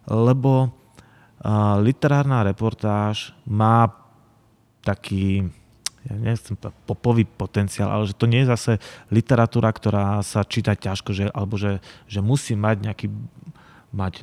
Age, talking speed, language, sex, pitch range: 30-49, 120 wpm, Slovak, male, 100-115 Hz